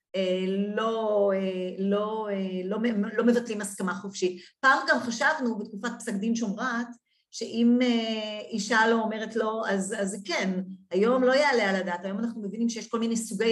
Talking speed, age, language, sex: 155 wpm, 40-59, Hebrew, female